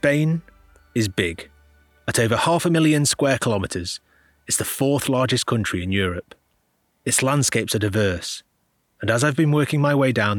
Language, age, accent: English, 30-49, British